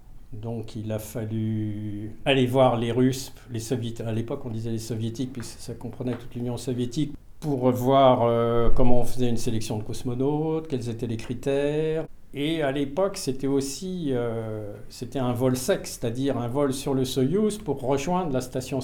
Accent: French